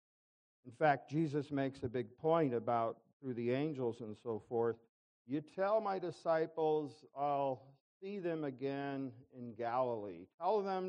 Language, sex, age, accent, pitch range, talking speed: English, male, 50-69, American, 115-155 Hz, 145 wpm